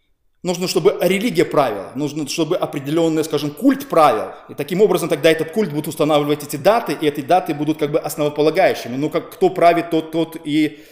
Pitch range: 155-200 Hz